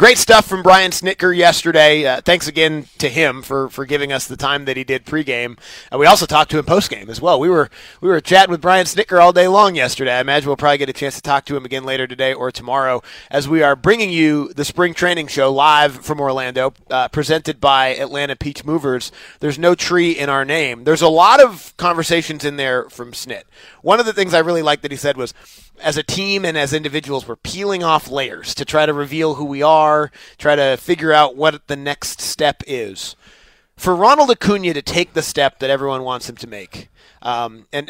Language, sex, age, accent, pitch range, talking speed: English, male, 30-49, American, 135-160 Hz, 225 wpm